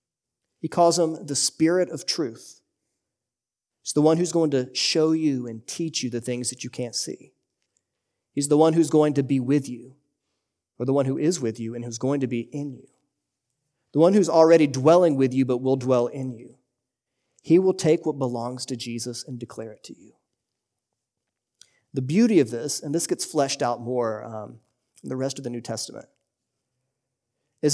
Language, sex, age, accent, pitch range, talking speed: English, male, 30-49, American, 120-150 Hz, 195 wpm